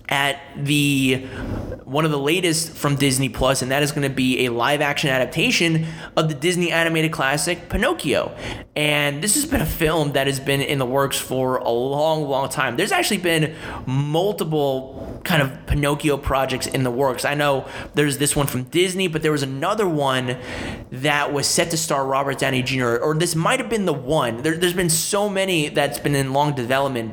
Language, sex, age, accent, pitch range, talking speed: English, male, 20-39, American, 130-160 Hz, 195 wpm